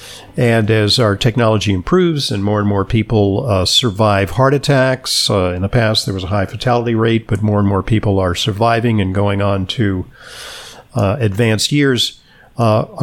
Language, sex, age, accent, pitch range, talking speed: English, male, 50-69, American, 105-130 Hz, 180 wpm